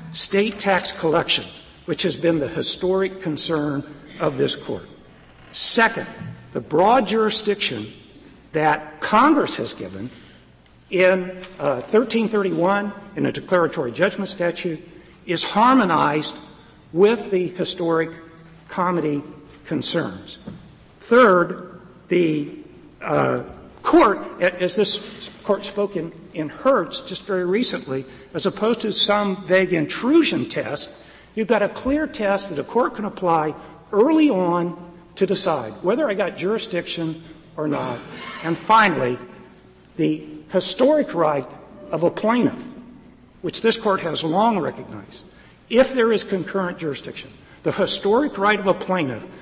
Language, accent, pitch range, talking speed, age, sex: English, American, 160-210 Hz, 120 wpm, 60-79, male